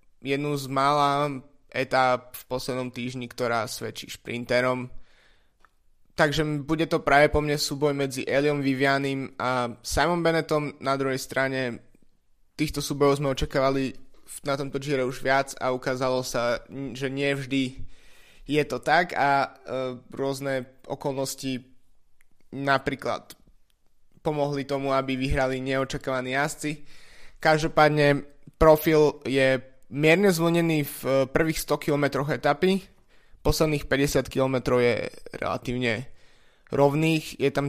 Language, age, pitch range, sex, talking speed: Slovak, 20-39, 125-145 Hz, male, 115 wpm